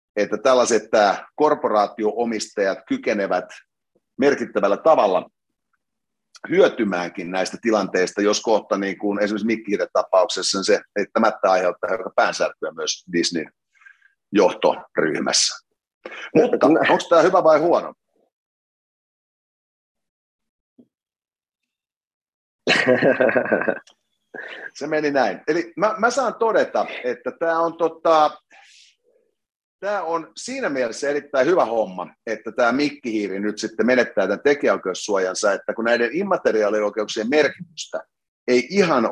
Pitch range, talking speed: 105-170 Hz, 100 wpm